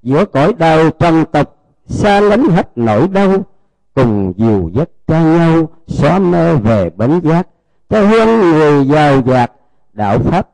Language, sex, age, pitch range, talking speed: Vietnamese, male, 50-69, 120-185 Hz, 155 wpm